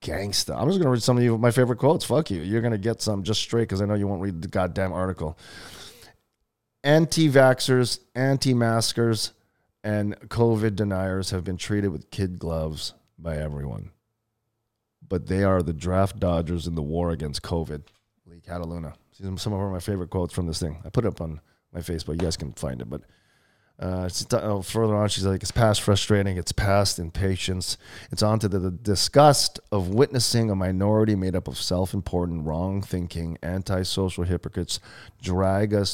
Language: English